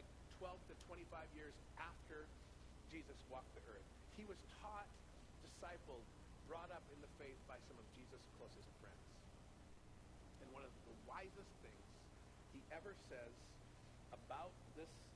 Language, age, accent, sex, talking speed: English, 50-69, American, male, 135 wpm